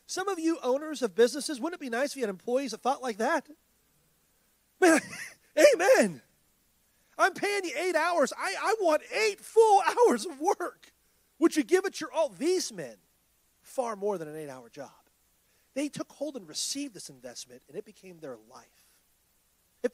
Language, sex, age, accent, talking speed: English, male, 30-49, American, 185 wpm